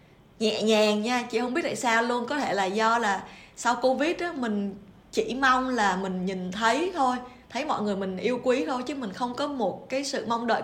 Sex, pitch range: female, 190-245 Hz